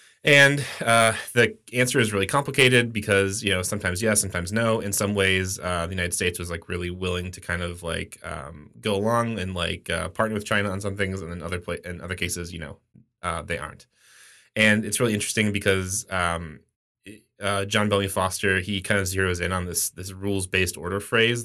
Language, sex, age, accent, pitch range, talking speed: English, male, 20-39, American, 90-110 Hz, 205 wpm